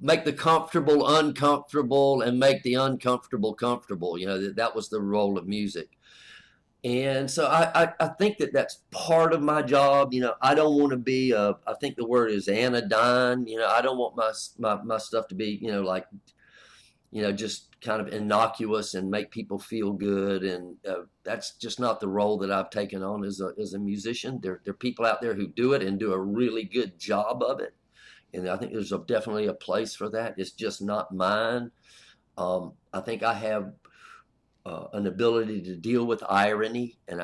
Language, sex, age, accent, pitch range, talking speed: English, male, 50-69, American, 100-130 Hz, 205 wpm